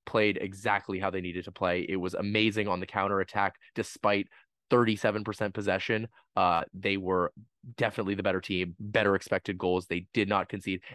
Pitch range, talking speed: 95-115 Hz, 165 wpm